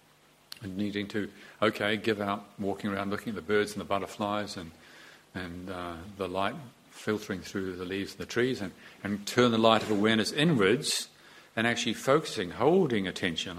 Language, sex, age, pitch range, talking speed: English, male, 50-69, 95-115 Hz, 175 wpm